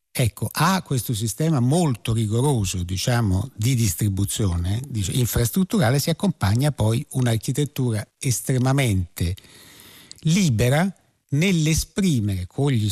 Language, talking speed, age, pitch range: Italian, 95 wpm, 60-79, 105-150 Hz